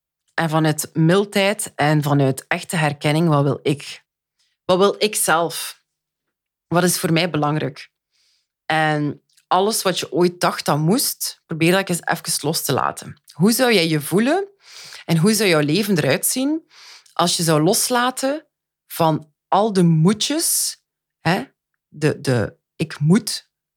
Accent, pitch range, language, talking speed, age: Dutch, 150-195 Hz, Dutch, 150 wpm, 30-49